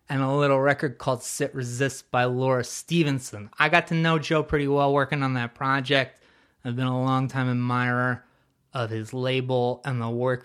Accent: American